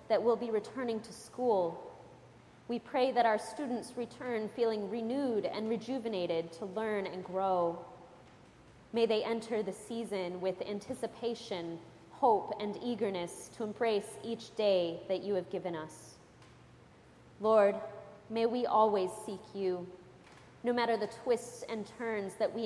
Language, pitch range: English, 180-225 Hz